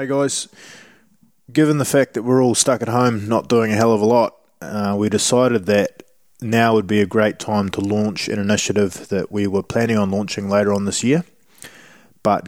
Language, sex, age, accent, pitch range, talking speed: English, male, 20-39, Australian, 100-115 Hz, 205 wpm